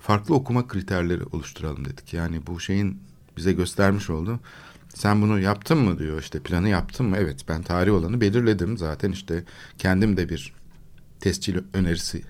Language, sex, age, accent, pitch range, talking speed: Turkish, male, 60-79, native, 85-125 Hz, 155 wpm